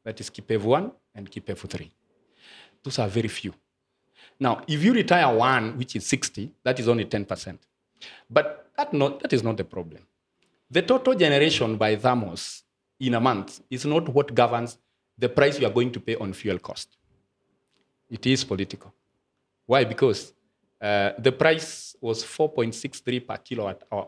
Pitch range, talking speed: 110-150 Hz, 165 wpm